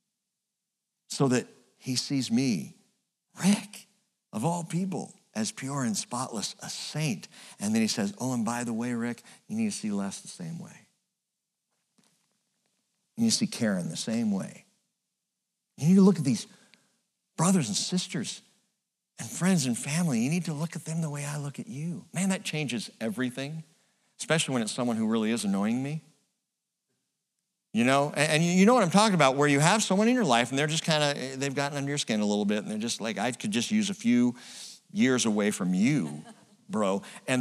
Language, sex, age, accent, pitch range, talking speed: English, male, 60-79, American, 155-210 Hz, 195 wpm